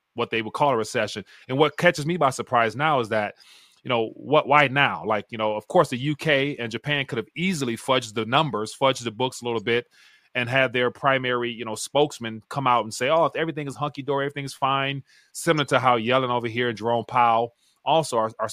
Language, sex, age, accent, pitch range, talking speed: English, male, 30-49, American, 115-135 Hz, 230 wpm